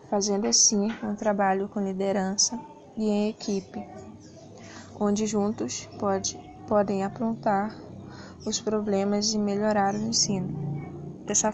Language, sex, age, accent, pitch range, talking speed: Portuguese, female, 10-29, Brazilian, 200-220 Hz, 105 wpm